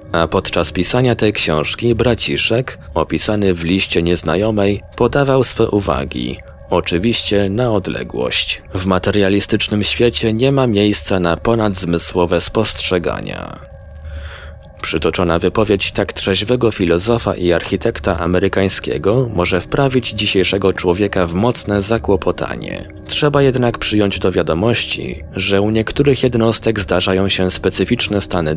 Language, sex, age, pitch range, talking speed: Polish, male, 20-39, 85-110 Hz, 110 wpm